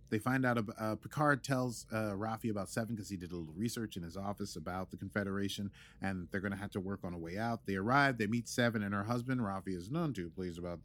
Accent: American